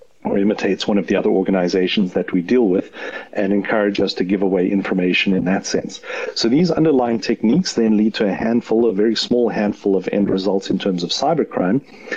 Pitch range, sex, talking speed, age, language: 95-110 Hz, male, 200 wpm, 40-59, English